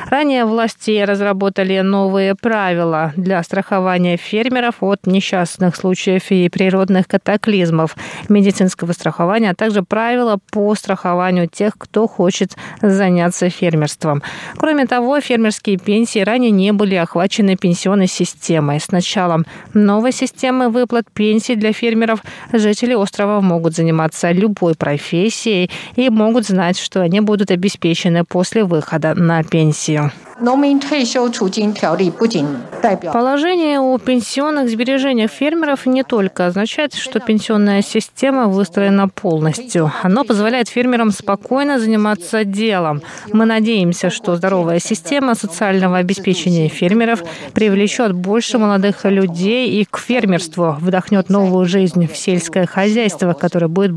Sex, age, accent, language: female, 20-39, native, Russian